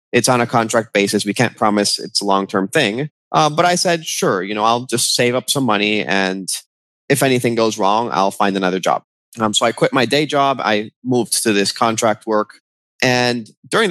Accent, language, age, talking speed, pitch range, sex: American, English, 30-49, 210 wpm, 100-130 Hz, male